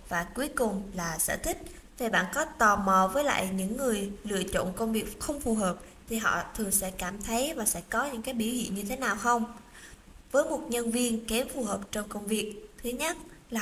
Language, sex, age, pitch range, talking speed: Vietnamese, female, 20-39, 200-245 Hz, 230 wpm